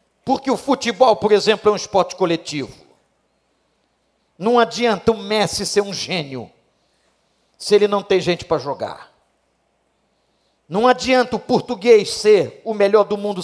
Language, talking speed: Portuguese, 145 wpm